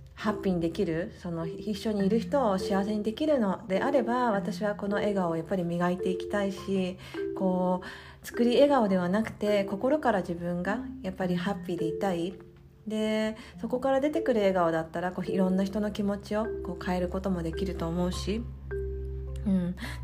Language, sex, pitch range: Japanese, female, 170-215 Hz